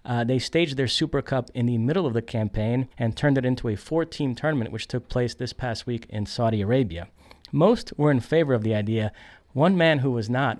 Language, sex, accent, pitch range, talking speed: English, male, American, 115-140 Hz, 225 wpm